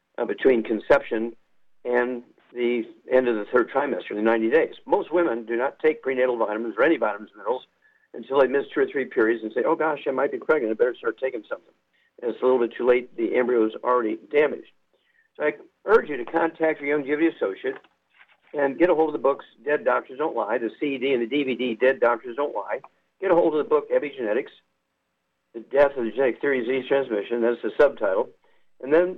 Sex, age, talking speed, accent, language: male, 50-69, 215 wpm, American, English